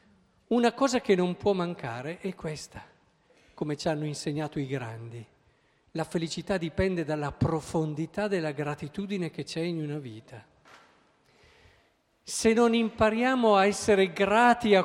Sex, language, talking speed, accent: male, Italian, 135 wpm, native